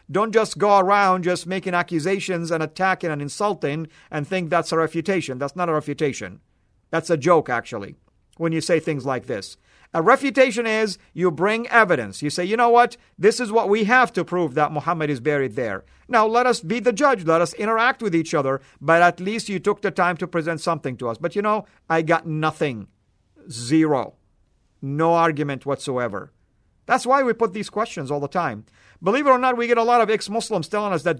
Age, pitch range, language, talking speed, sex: 50-69, 150-200 Hz, English, 210 wpm, male